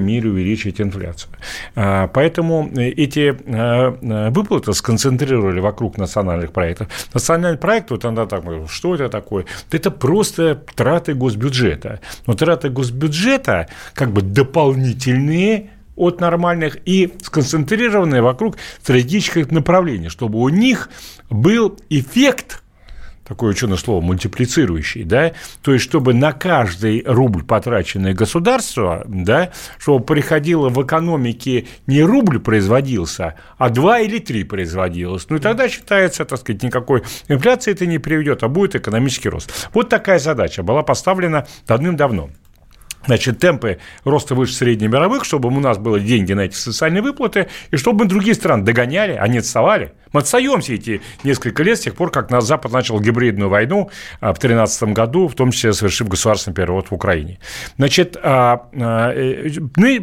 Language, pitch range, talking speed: Russian, 110-170 Hz, 135 wpm